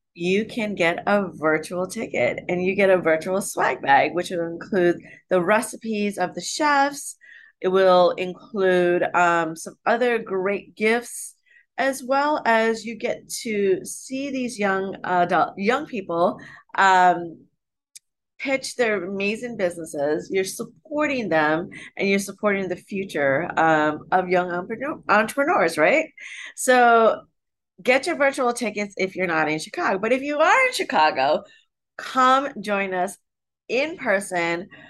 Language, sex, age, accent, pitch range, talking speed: English, female, 30-49, American, 180-245 Hz, 140 wpm